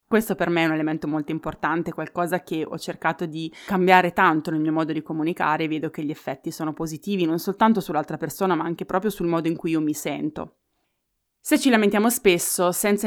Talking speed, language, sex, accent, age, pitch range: 210 wpm, Italian, female, native, 20-39, 160-195 Hz